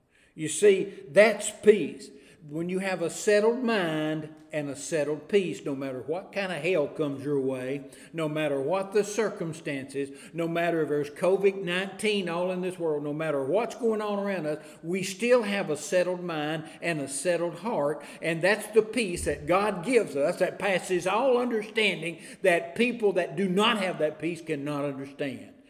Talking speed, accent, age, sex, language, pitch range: 180 wpm, American, 60-79, male, English, 150-195 Hz